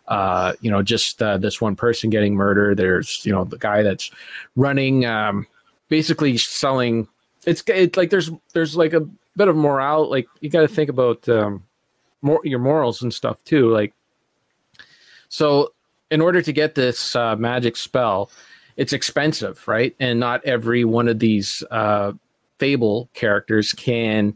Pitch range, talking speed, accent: 110-140 Hz, 165 wpm, American